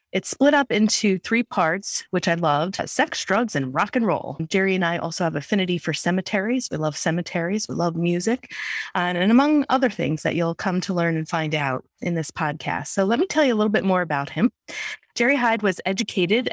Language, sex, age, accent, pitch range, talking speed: English, female, 30-49, American, 165-215 Hz, 220 wpm